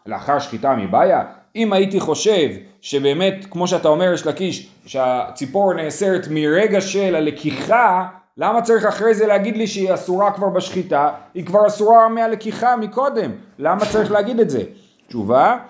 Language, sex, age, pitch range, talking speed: Hebrew, male, 30-49, 150-215 Hz, 145 wpm